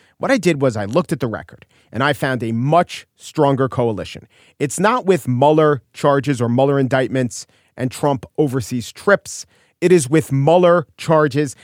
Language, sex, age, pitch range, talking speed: English, male, 40-59, 130-180 Hz, 170 wpm